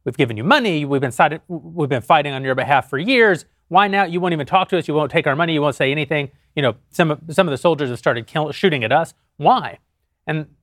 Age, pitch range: 30-49, 135-185 Hz